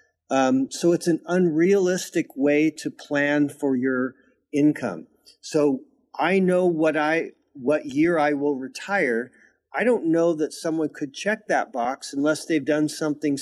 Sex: male